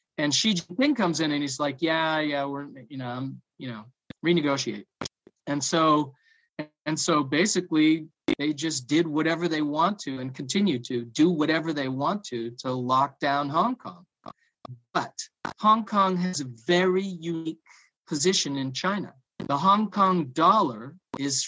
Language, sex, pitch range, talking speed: English, male, 135-180 Hz, 160 wpm